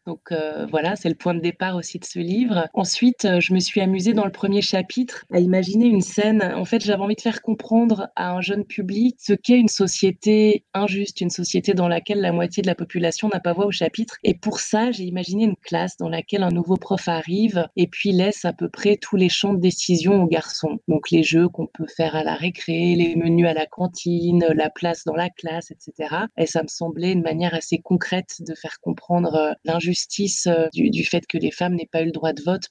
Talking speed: 230 wpm